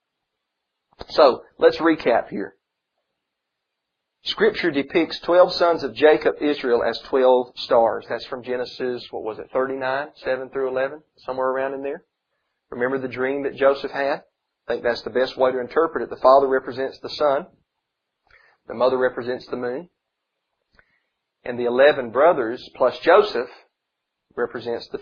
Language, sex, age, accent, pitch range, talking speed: English, male, 40-59, American, 125-150 Hz, 145 wpm